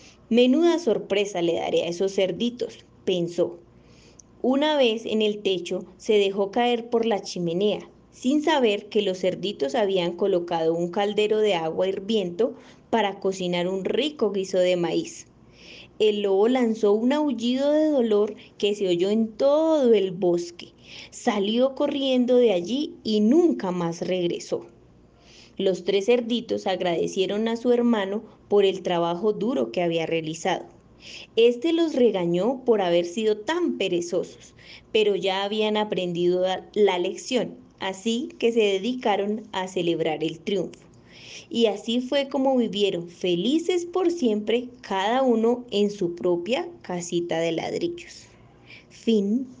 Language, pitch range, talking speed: Spanish, 185-245 Hz, 135 wpm